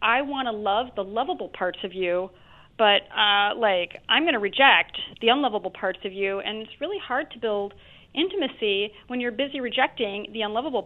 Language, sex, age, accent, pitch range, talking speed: English, female, 40-59, American, 195-245 Hz, 190 wpm